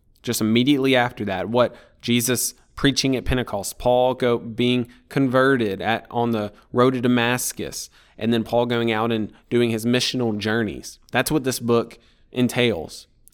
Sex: male